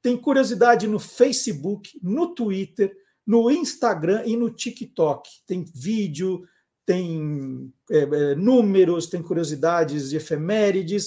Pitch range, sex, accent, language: 165-230 Hz, male, Brazilian, Portuguese